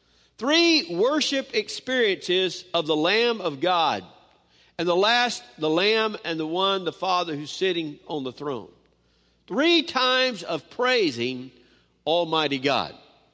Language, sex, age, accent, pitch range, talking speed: English, male, 50-69, American, 180-285 Hz, 130 wpm